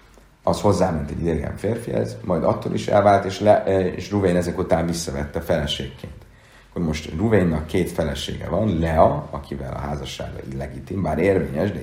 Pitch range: 75-100 Hz